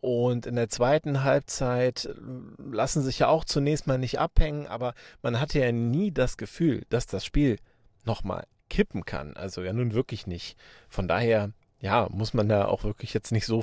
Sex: male